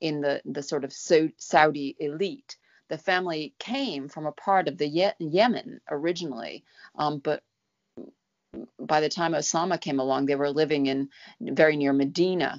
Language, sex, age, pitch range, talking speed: English, female, 40-59, 145-185 Hz, 155 wpm